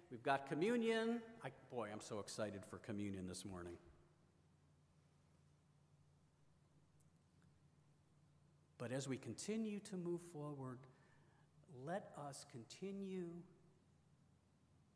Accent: American